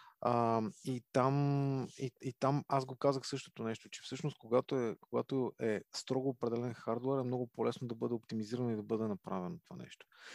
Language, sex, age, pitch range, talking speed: Bulgarian, male, 20-39, 110-135 Hz, 185 wpm